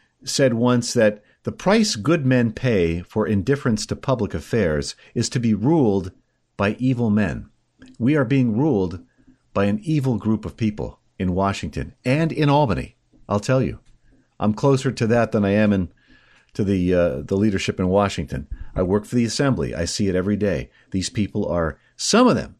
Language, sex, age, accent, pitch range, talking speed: English, male, 50-69, American, 105-135 Hz, 180 wpm